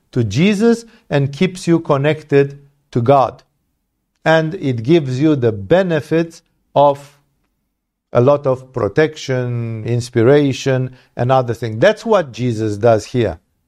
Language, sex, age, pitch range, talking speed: English, male, 50-69, 125-185 Hz, 125 wpm